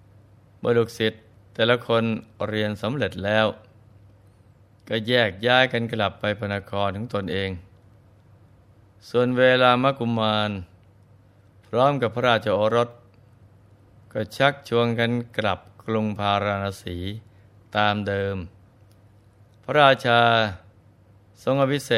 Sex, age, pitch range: male, 20-39, 100-115 Hz